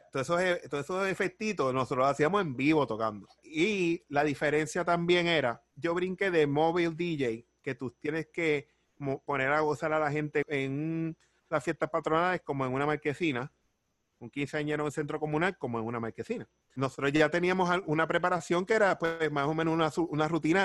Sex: male